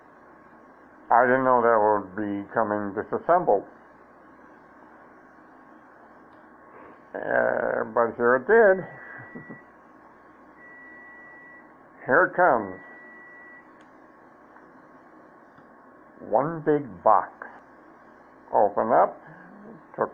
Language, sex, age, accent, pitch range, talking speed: English, male, 60-79, American, 110-140 Hz, 65 wpm